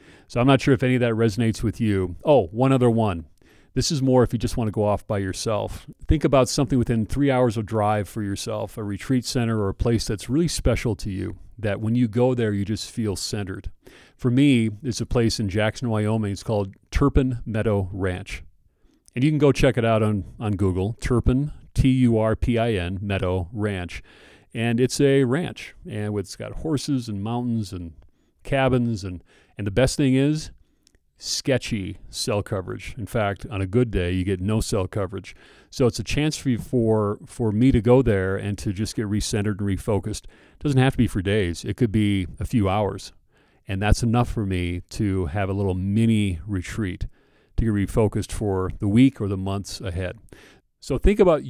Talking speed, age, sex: 200 wpm, 40-59, male